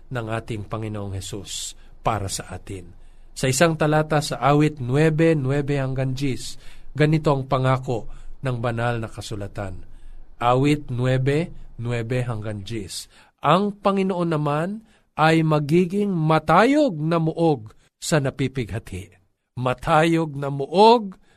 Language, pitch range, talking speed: Filipino, 120-165 Hz, 115 wpm